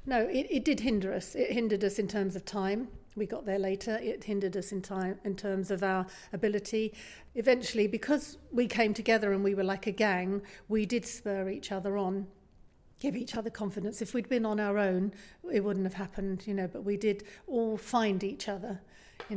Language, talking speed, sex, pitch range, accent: English, 210 wpm, female, 195-220 Hz, British